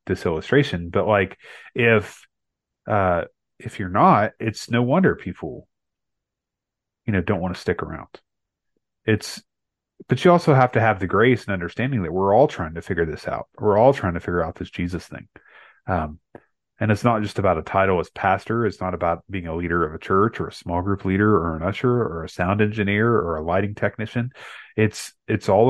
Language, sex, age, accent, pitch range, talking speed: English, male, 30-49, American, 90-110 Hz, 200 wpm